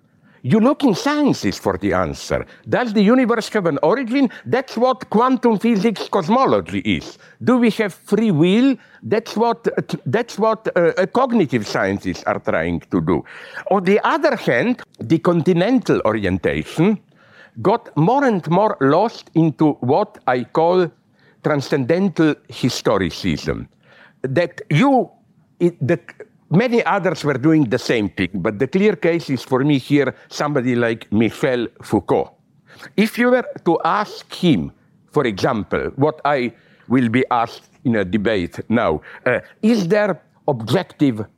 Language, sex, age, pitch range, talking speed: English, male, 60-79, 150-220 Hz, 140 wpm